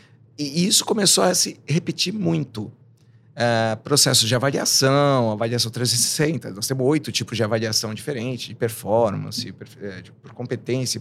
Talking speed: 140 wpm